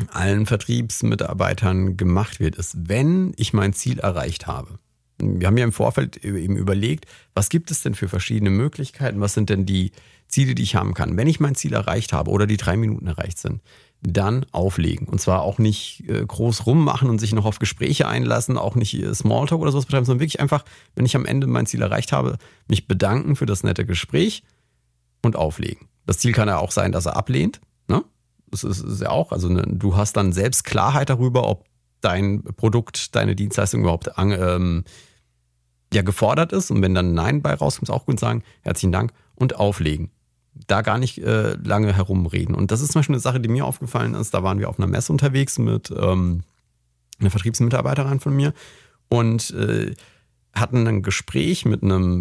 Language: German